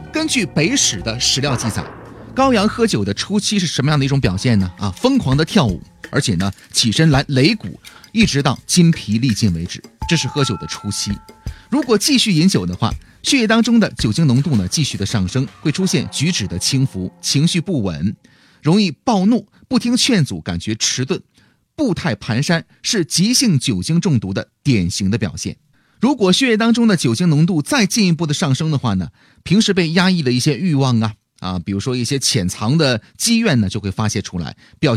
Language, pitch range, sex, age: Chinese, 115-185 Hz, male, 30-49